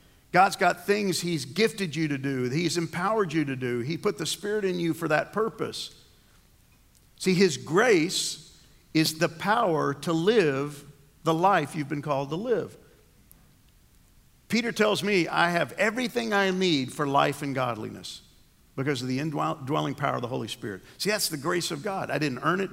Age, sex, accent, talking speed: 50-69, male, American, 180 wpm